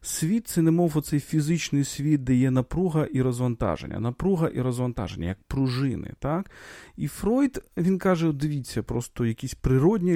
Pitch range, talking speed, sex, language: 105-140 Hz, 165 wpm, male, Ukrainian